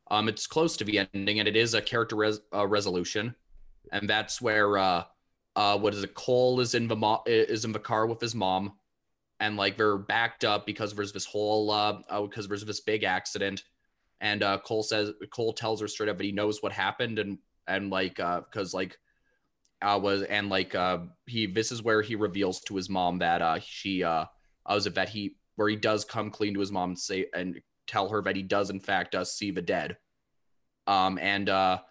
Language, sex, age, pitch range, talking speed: English, male, 20-39, 95-110 Hz, 225 wpm